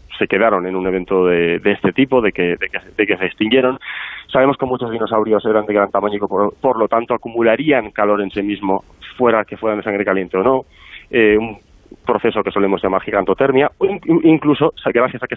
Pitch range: 105-135 Hz